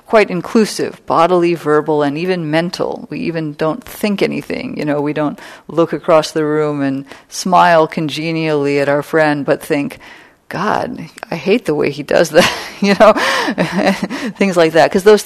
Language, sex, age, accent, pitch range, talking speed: English, female, 40-59, American, 140-175 Hz, 170 wpm